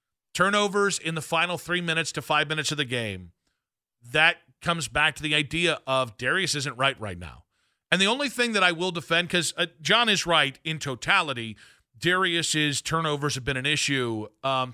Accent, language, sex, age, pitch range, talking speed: American, English, male, 40-59, 140-175 Hz, 185 wpm